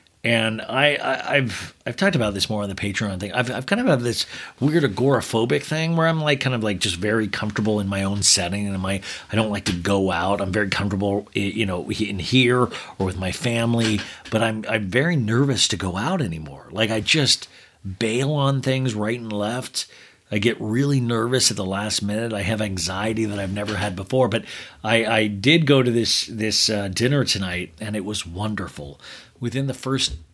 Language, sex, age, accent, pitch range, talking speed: English, male, 40-59, American, 100-130 Hz, 210 wpm